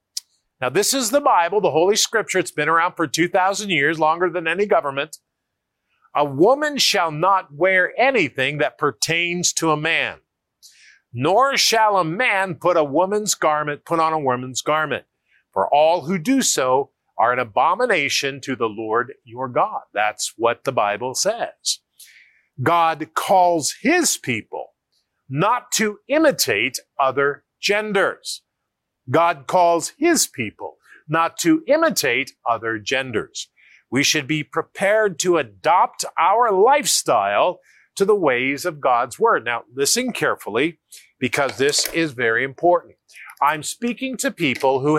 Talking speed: 140 wpm